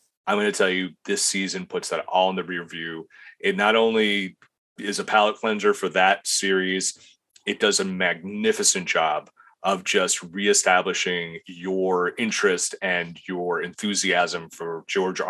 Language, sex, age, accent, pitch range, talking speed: English, male, 30-49, American, 90-115 Hz, 155 wpm